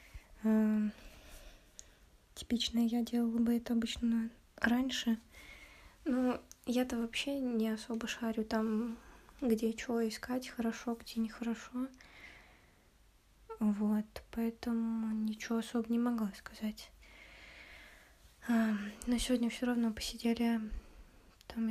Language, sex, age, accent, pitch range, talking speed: Russian, female, 20-39, native, 220-240 Hz, 90 wpm